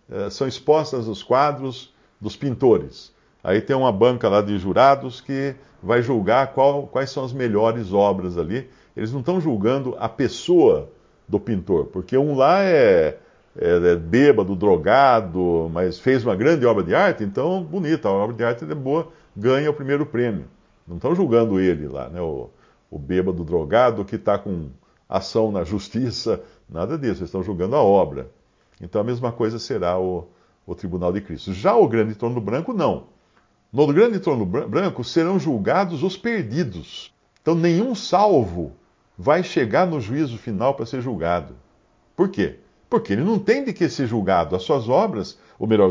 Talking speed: 170 wpm